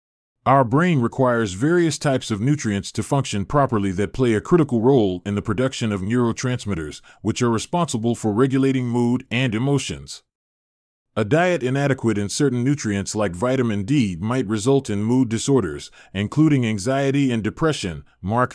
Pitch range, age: 105-140 Hz, 30-49